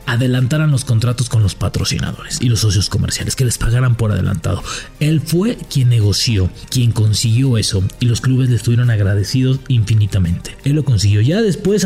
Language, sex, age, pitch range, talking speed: English, male, 40-59, 115-145 Hz, 170 wpm